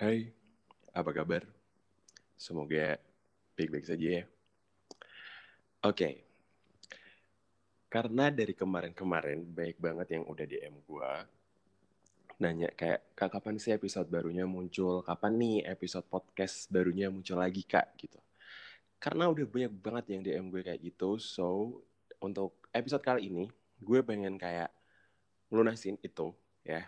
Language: Indonesian